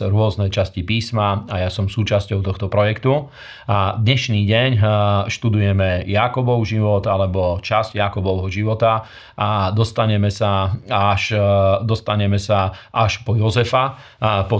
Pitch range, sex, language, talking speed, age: 100-120 Hz, male, Slovak, 120 wpm, 40-59